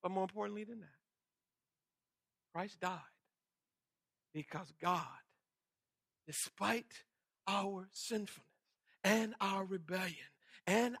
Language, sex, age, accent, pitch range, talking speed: English, male, 60-79, American, 190-255 Hz, 85 wpm